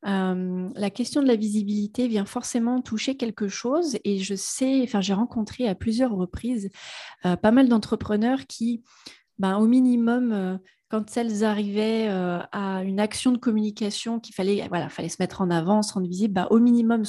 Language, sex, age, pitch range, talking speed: French, female, 30-49, 195-245 Hz, 185 wpm